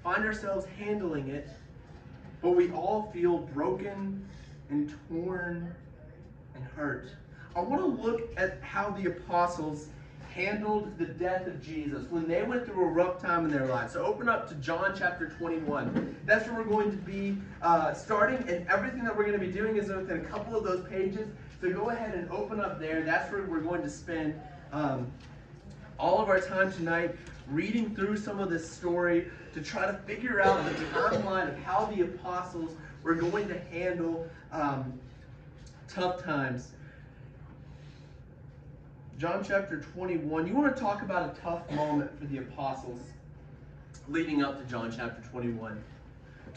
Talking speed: 165 wpm